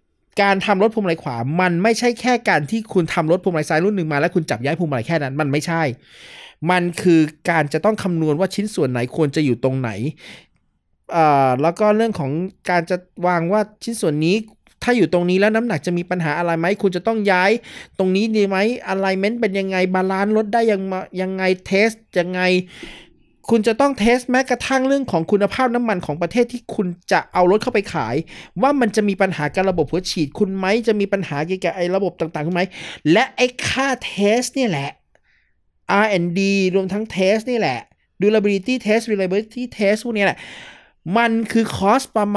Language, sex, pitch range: Thai, male, 155-215 Hz